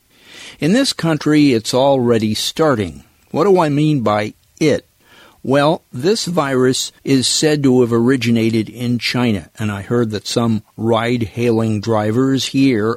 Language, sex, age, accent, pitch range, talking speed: English, male, 50-69, American, 110-140 Hz, 140 wpm